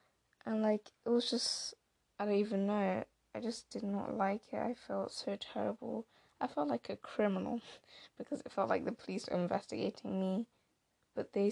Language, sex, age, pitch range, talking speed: English, female, 10-29, 180-215 Hz, 180 wpm